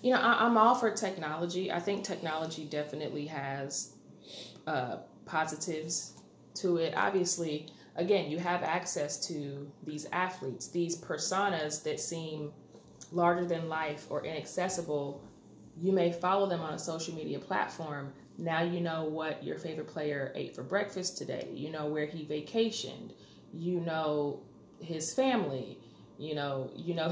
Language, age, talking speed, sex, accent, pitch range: English, 30-49, 140 wpm, female, American, 150-185 Hz